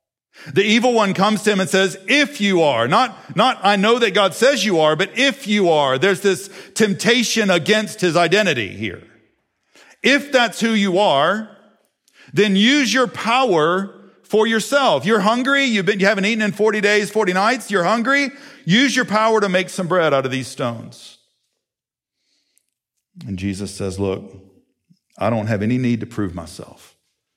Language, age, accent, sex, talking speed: English, 50-69, American, male, 170 wpm